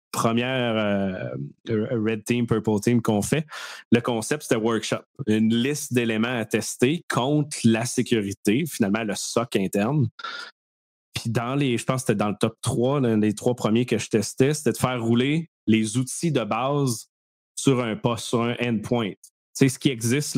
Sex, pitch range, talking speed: male, 110-125 Hz, 175 wpm